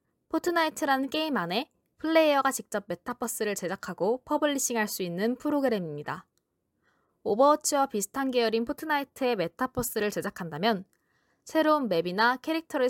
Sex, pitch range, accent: female, 200-280 Hz, native